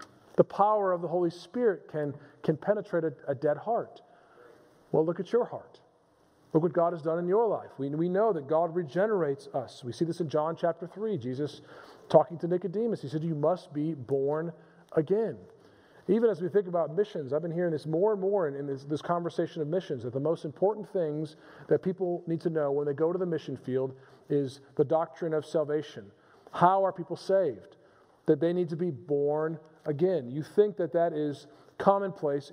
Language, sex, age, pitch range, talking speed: English, male, 40-59, 150-180 Hz, 205 wpm